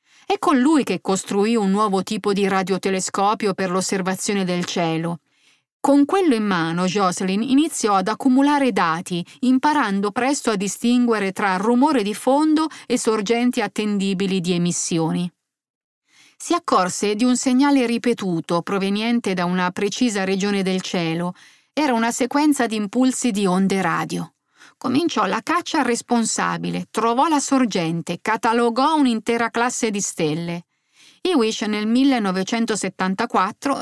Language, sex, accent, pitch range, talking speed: Italian, female, native, 190-255 Hz, 130 wpm